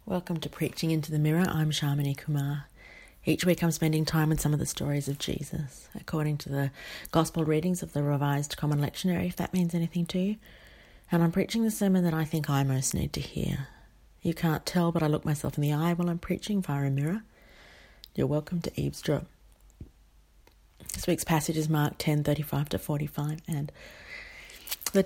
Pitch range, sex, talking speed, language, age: 150-190 Hz, female, 195 wpm, English, 30-49